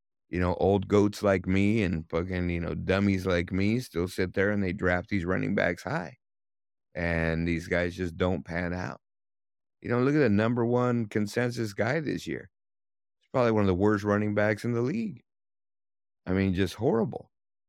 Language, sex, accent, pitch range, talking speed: English, male, American, 85-105 Hz, 190 wpm